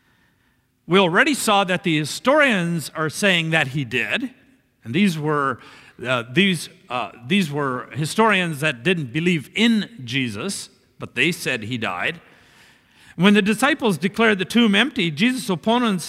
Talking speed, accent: 145 wpm, American